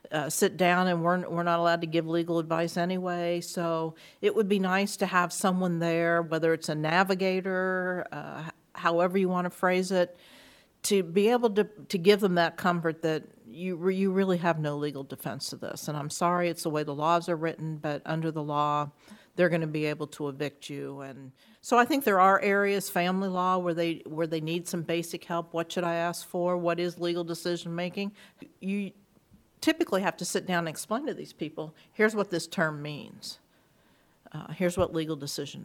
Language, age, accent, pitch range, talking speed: English, 50-69, American, 165-195 Hz, 205 wpm